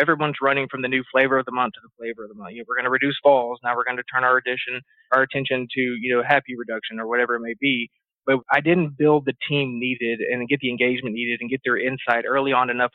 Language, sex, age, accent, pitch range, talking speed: English, male, 20-39, American, 125-145 Hz, 280 wpm